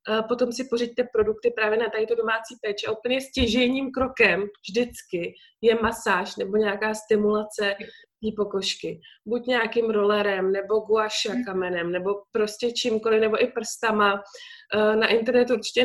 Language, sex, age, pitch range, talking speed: Czech, female, 20-39, 200-240 Hz, 135 wpm